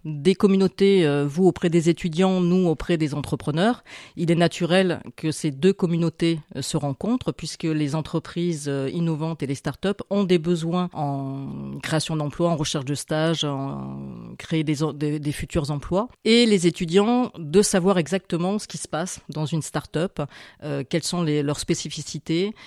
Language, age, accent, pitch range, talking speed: French, 40-59, French, 145-175 Hz, 160 wpm